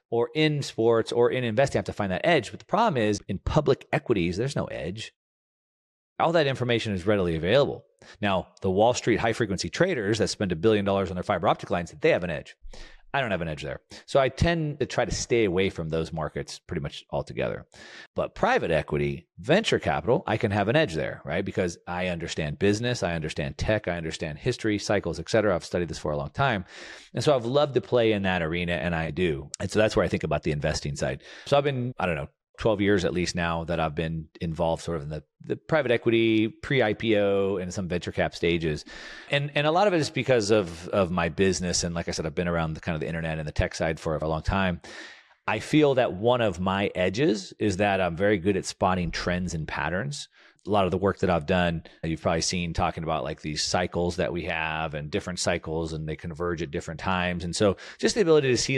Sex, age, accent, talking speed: male, 40-59, American, 240 wpm